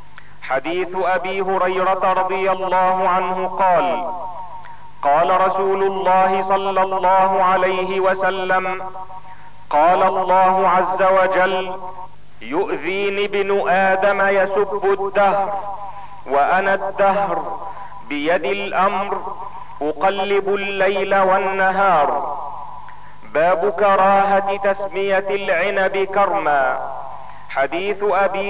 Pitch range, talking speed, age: 190-205 Hz, 80 wpm, 50-69